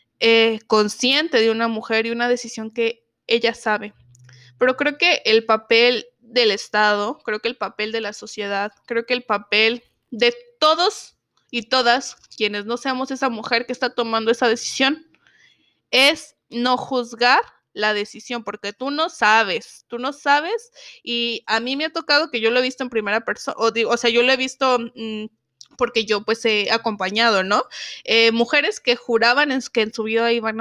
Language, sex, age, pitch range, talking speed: Spanish, female, 20-39, 220-260 Hz, 180 wpm